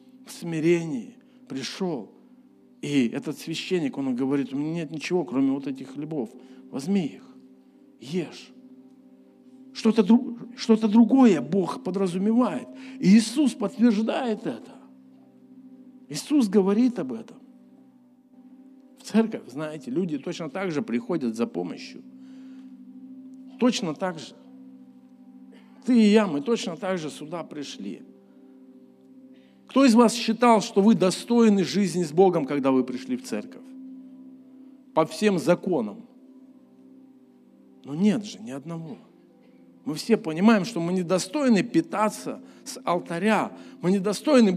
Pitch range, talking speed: 175-255 Hz, 115 wpm